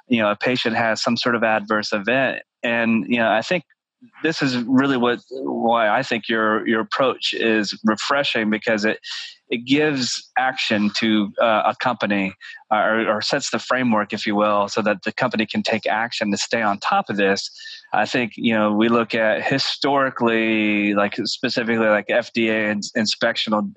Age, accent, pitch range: 20-39, American, 105-120 Hz